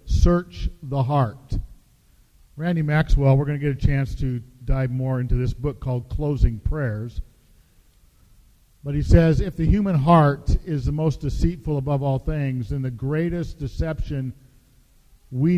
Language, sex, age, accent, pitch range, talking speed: English, male, 50-69, American, 105-155 Hz, 150 wpm